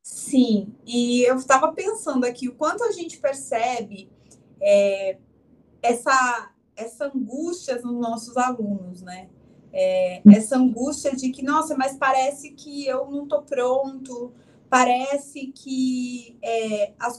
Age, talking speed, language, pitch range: 20-39, 115 wpm, Portuguese, 235-285 Hz